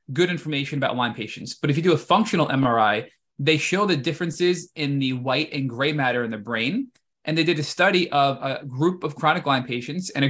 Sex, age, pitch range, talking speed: male, 20-39, 135-165 Hz, 225 wpm